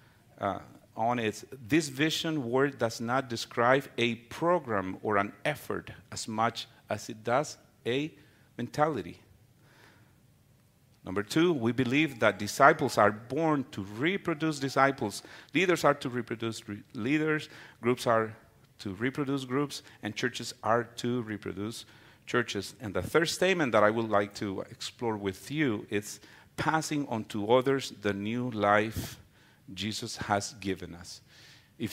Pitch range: 105-135 Hz